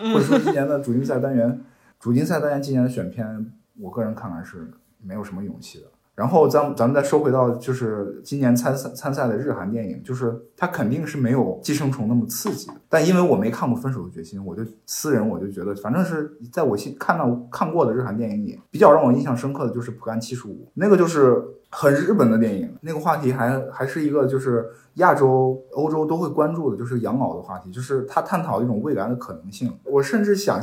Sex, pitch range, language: male, 115-145 Hz, Chinese